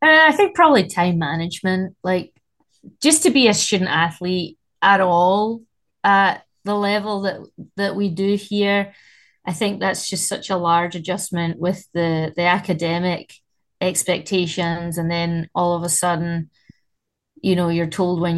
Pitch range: 170-200 Hz